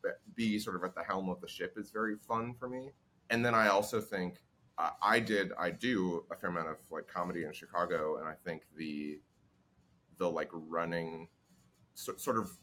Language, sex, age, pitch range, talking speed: English, male, 20-39, 85-115 Hz, 195 wpm